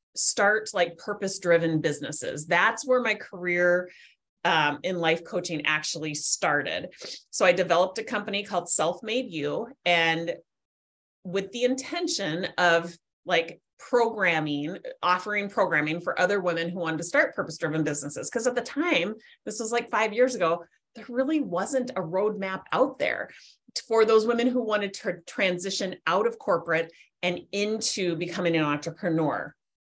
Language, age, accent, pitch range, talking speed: English, 30-49, American, 165-235 Hz, 150 wpm